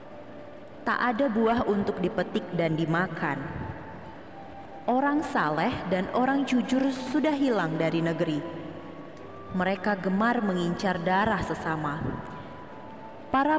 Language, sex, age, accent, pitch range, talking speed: Indonesian, female, 20-39, native, 175-255 Hz, 95 wpm